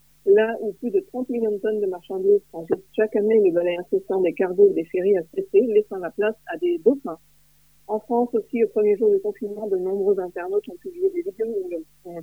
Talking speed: 225 wpm